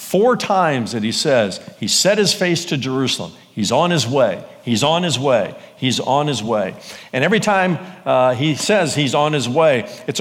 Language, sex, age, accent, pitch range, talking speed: English, male, 50-69, American, 120-170 Hz, 200 wpm